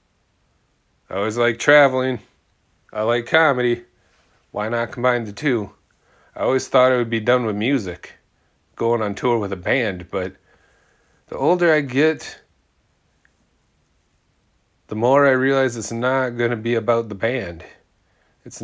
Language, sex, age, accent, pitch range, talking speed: English, male, 30-49, American, 95-125 Hz, 145 wpm